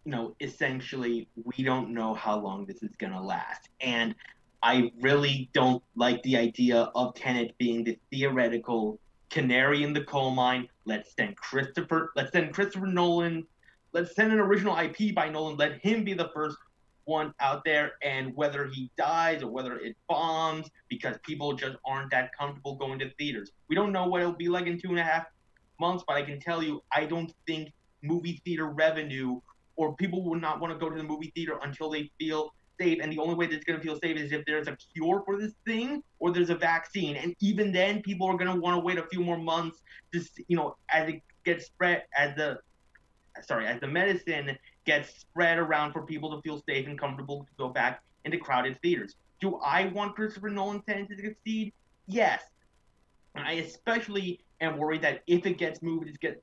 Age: 30-49